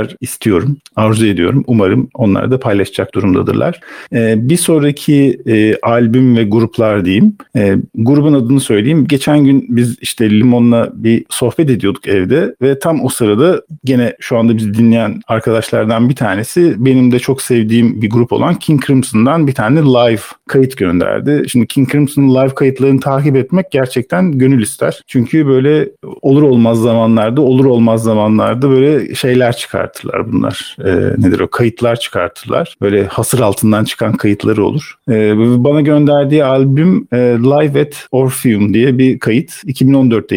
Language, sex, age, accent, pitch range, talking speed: Turkish, male, 50-69, native, 115-145 Hz, 150 wpm